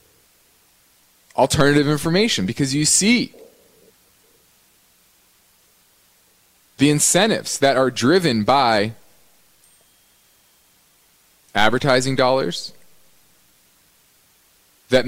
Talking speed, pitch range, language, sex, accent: 55 wpm, 130-185 Hz, English, male, American